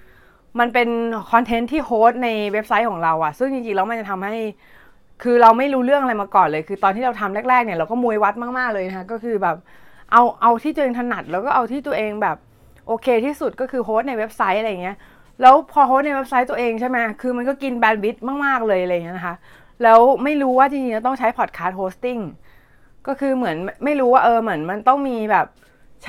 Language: Thai